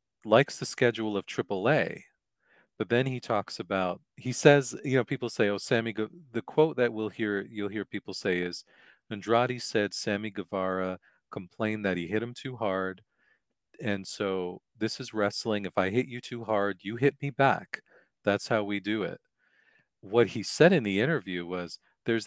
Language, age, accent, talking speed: English, 40-59, American, 185 wpm